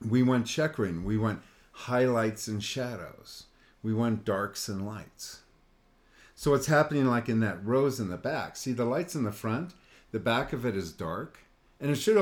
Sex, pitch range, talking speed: male, 105-135 Hz, 185 wpm